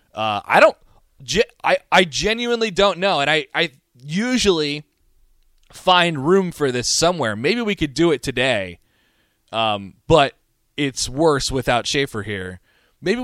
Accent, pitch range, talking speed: American, 105-155 Hz, 145 wpm